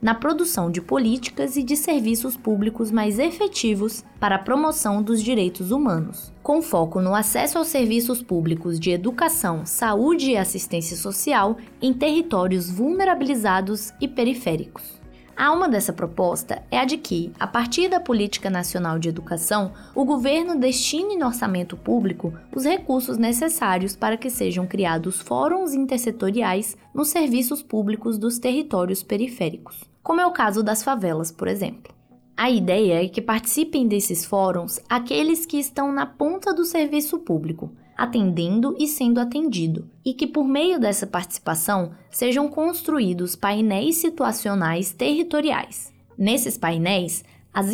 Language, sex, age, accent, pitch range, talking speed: Portuguese, female, 20-39, Brazilian, 185-280 Hz, 140 wpm